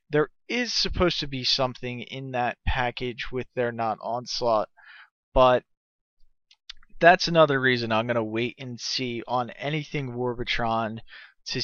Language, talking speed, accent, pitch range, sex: English, 140 wpm, American, 120-150 Hz, male